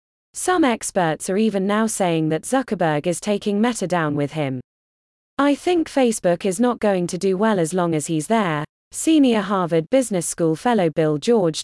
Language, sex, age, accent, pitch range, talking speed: English, female, 20-39, British, 160-230 Hz, 180 wpm